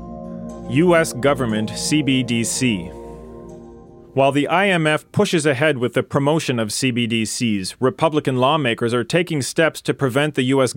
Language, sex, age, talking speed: English, male, 40-59, 125 wpm